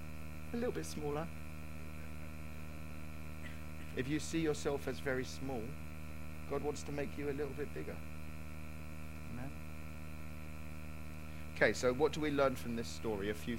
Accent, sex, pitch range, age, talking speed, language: British, male, 75-125 Hz, 40-59, 140 wpm, English